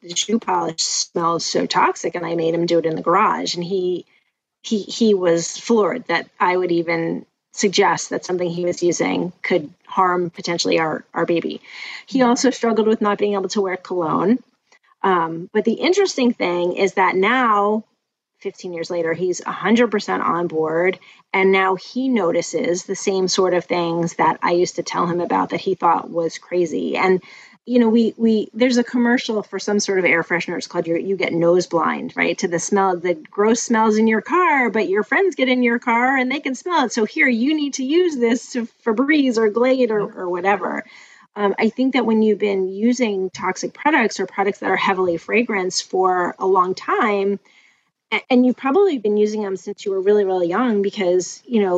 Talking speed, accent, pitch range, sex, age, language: 205 wpm, American, 180-235 Hz, female, 30-49, English